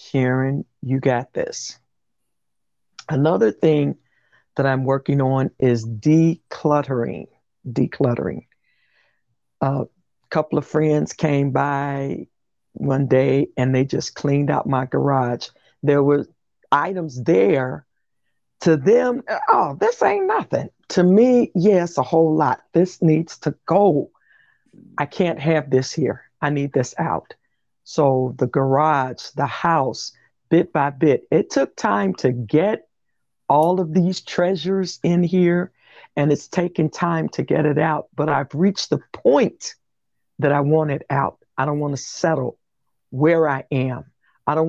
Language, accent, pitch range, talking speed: English, American, 135-175 Hz, 140 wpm